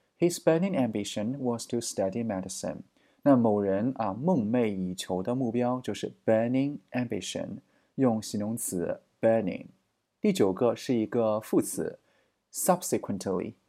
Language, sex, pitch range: Chinese, male, 110-145 Hz